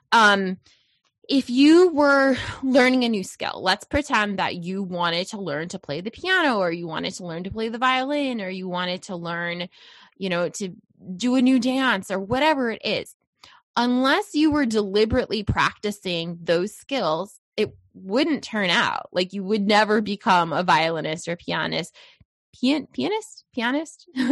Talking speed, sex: 165 wpm, female